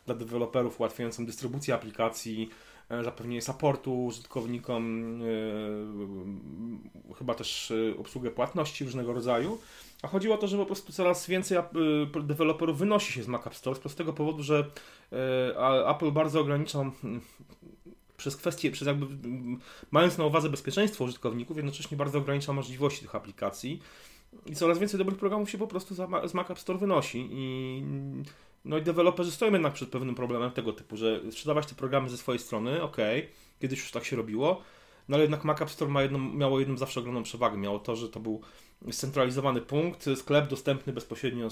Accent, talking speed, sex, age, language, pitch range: native, 165 wpm, male, 30-49, Polish, 115-150 Hz